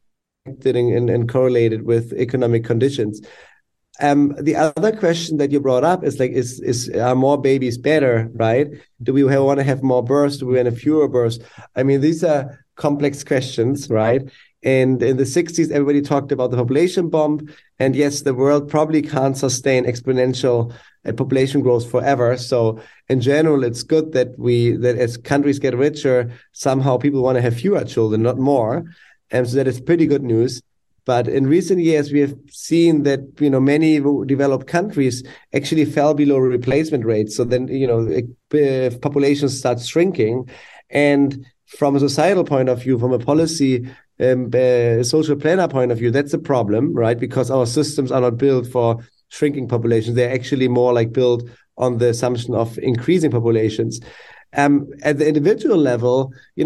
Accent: German